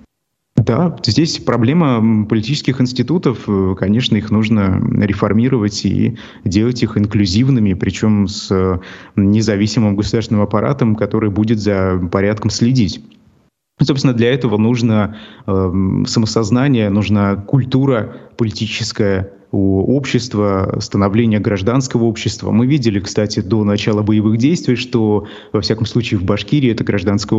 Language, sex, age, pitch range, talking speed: Russian, male, 20-39, 100-120 Hz, 110 wpm